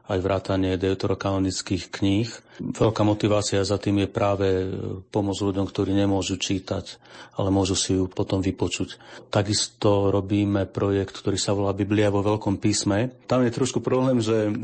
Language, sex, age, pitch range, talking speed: Slovak, male, 40-59, 100-110 Hz, 150 wpm